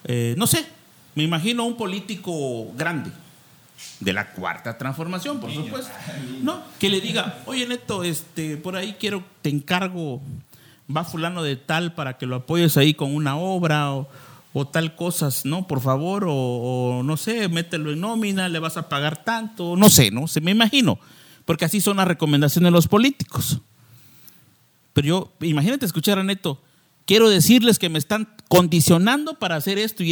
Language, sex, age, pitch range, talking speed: Spanish, male, 50-69, 145-200 Hz, 175 wpm